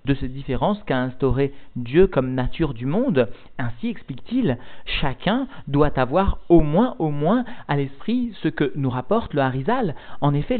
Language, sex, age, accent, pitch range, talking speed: French, male, 40-59, French, 145-195 Hz, 165 wpm